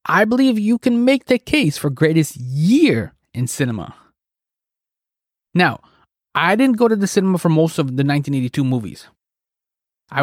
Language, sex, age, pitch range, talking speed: English, male, 20-39, 145-225 Hz, 155 wpm